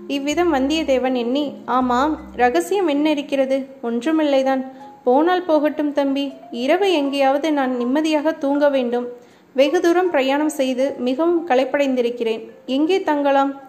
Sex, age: female, 20-39